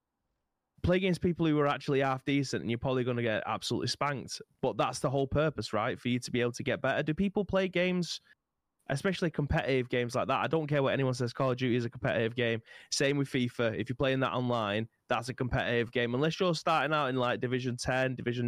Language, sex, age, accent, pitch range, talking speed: English, male, 20-39, British, 120-145 Hz, 240 wpm